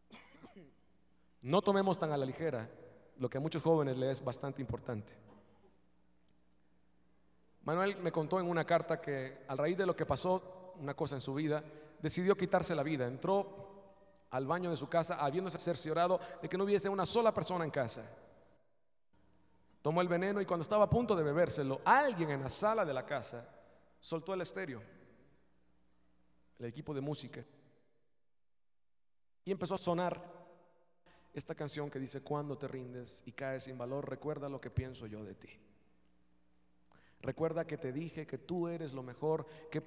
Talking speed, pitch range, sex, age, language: 165 wpm, 105-165 Hz, male, 40-59, Spanish